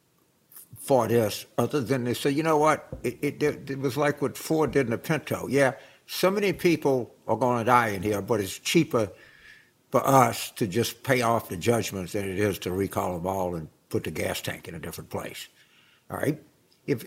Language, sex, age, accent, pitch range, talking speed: English, male, 60-79, American, 115-155 Hz, 205 wpm